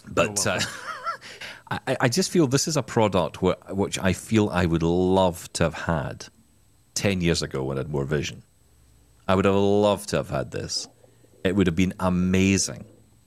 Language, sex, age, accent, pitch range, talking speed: English, male, 40-59, British, 85-110 Hz, 185 wpm